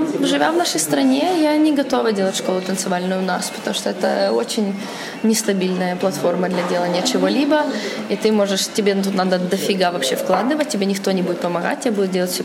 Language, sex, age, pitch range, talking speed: Russian, female, 20-39, 200-255 Hz, 195 wpm